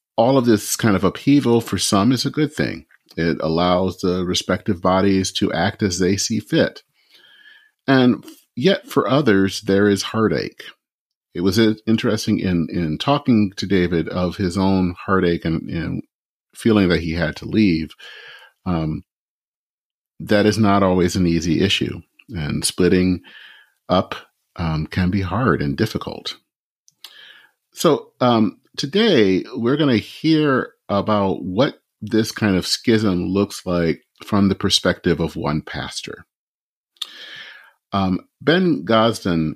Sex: male